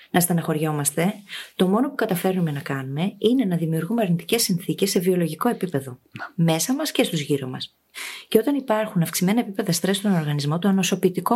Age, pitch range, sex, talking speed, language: 30-49, 170-225 Hz, female, 170 wpm, Greek